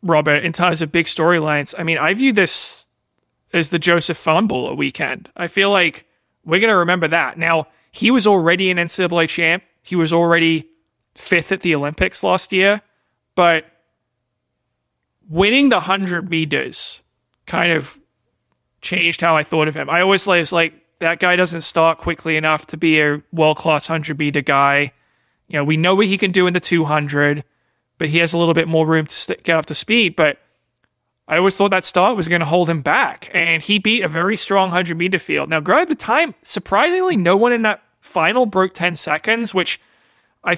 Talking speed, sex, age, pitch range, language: 190 wpm, male, 30-49, 155-185 Hz, English